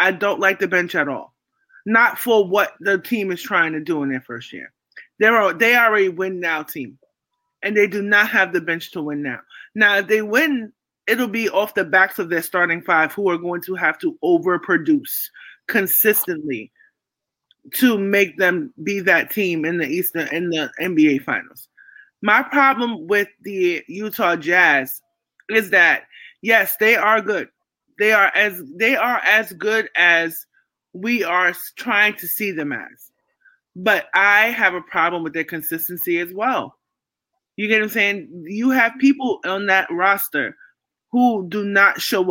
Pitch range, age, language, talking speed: 180-225 Hz, 20-39, English, 170 wpm